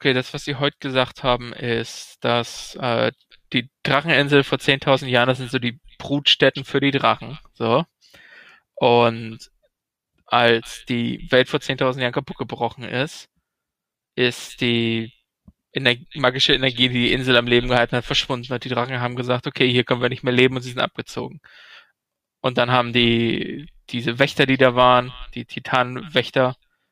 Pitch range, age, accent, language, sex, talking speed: 125-140 Hz, 20-39, German, German, male, 165 wpm